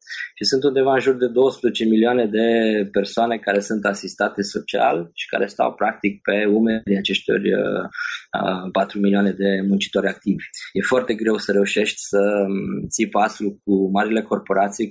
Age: 20-39